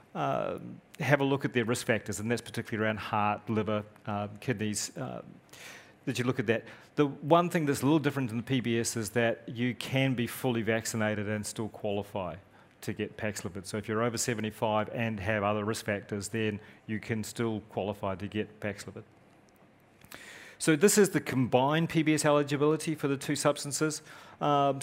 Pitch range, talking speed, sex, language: 105-130 Hz, 180 wpm, male, English